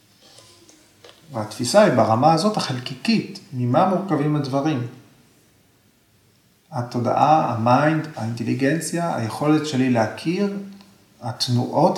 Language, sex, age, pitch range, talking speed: Hebrew, male, 40-59, 115-155 Hz, 75 wpm